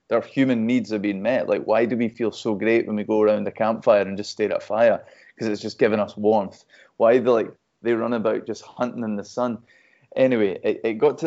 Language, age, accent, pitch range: English, 20-39, British, 110-125 Hz